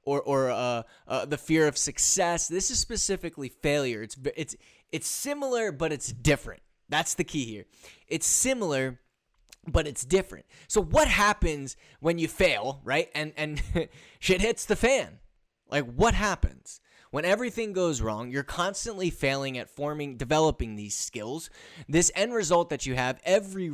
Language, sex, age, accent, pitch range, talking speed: English, male, 20-39, American, 140-195 Hz, 160 wpm